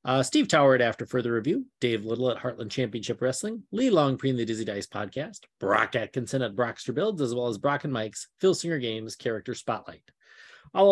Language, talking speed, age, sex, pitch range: English, 205 wpm, 30-49, male, 130-175 Hz